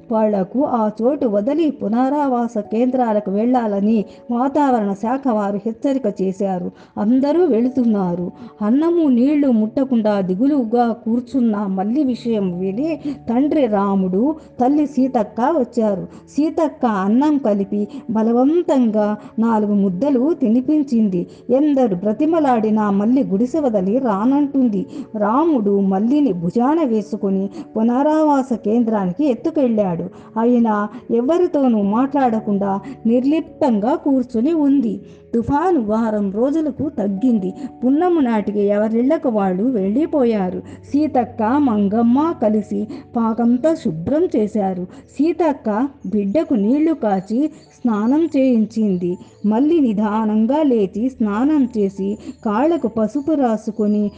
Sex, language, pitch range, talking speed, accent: female, Telugu, 210-280 Hz, 90 wpm, native